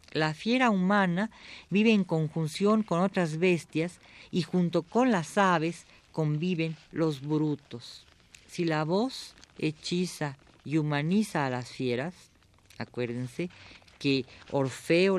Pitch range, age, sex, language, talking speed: 145-190 Hz, 40-59, female, Spanish, 115 wpm